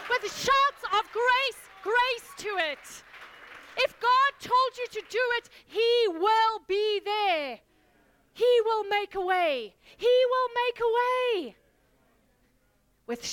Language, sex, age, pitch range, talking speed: English, female, 30-49, 275-375 Hz, 130 wpm